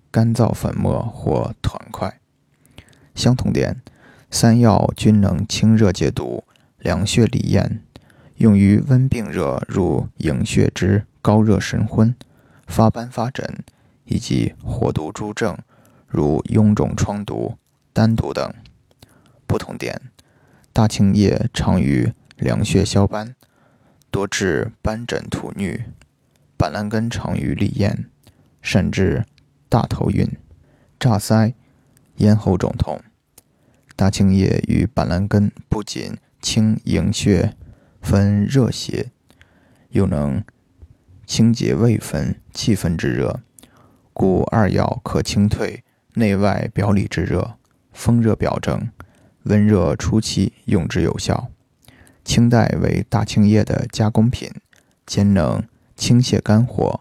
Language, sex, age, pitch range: Chinese, male, 20-39, 100-115 Hz